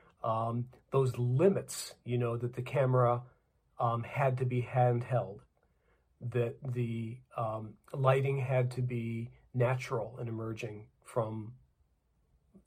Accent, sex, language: American, male, Turkish